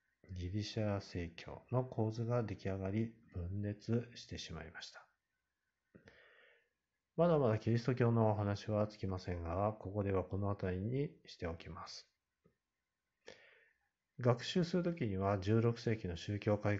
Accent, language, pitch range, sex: native, Japanese, 95-120 Hz, male